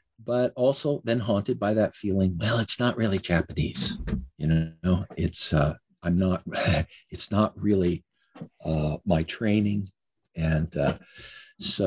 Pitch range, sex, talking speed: 85-115 Hz, male, 135 wpm